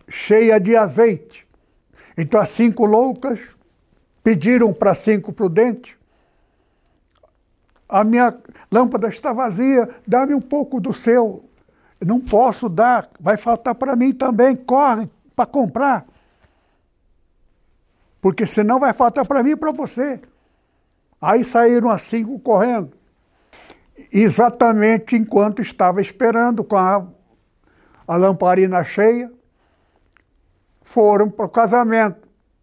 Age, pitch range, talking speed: 60-79, 200-240 Hz, 110 wpm